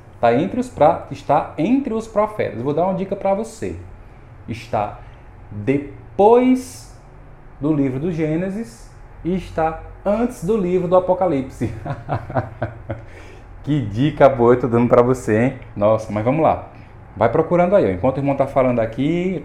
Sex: male